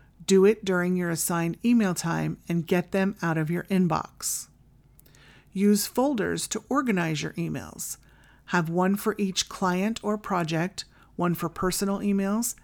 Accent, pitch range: American, 165-205 Hz